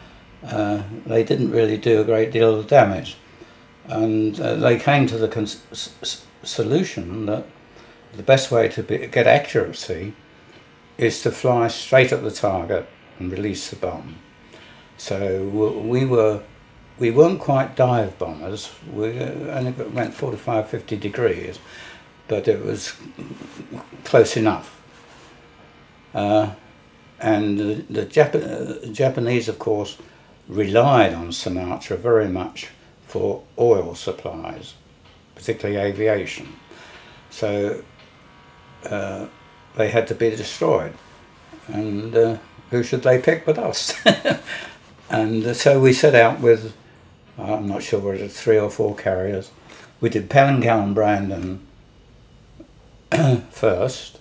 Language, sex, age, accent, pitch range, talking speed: English, male, 60-79, British, 105-120 Hz, 125 wpm